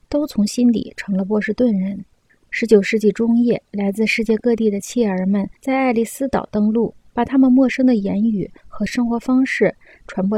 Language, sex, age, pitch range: Chinese, female, 20-39, 200-250 Hz